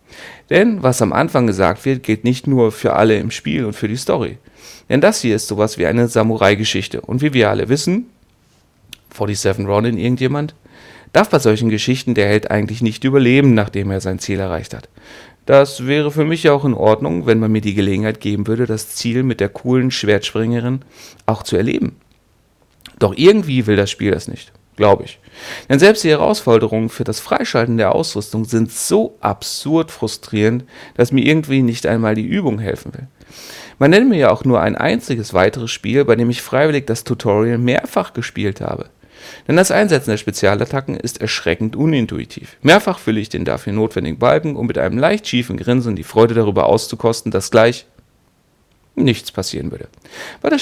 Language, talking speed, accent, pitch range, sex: German, 180 wpm, German, 105-130 Hz, male